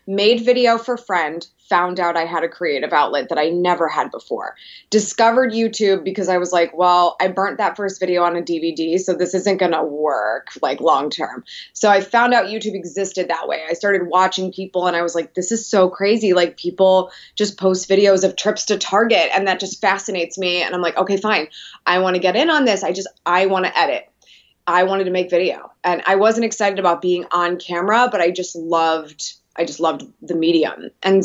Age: 20-39